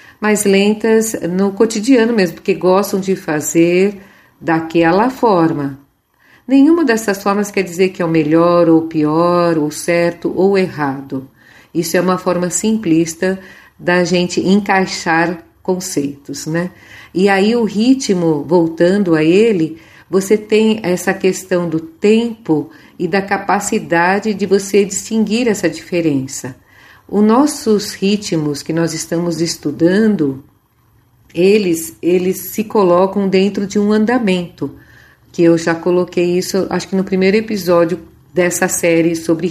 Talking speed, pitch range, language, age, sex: 130 wpm, 165-200 Hz, Portuguese, 50-69, female